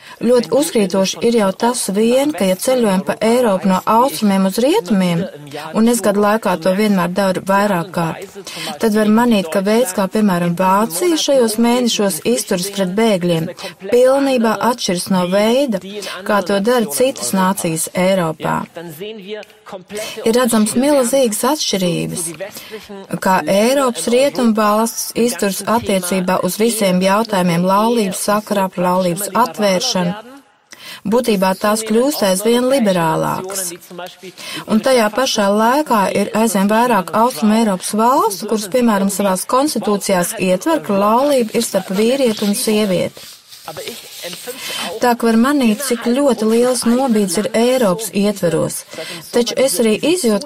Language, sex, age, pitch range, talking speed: English, female, 30-49, 190-240 Hz, 120 wpm